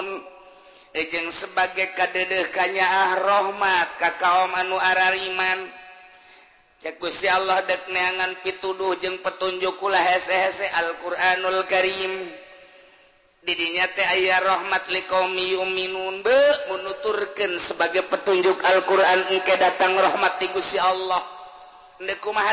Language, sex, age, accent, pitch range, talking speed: Indonesian, male, 40-59, native, 140-185 Hz, 105 wpm